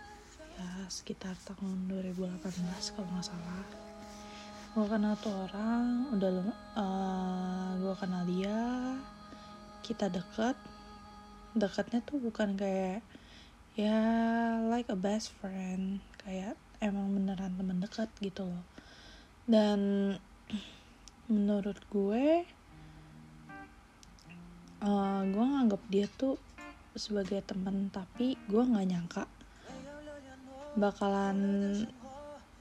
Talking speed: 90 wpm